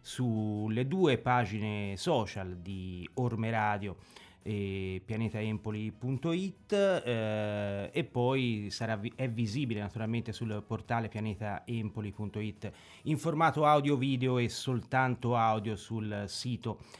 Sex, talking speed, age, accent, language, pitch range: male, 90 wpm, 30-49, native, Italian, 105-125 Hz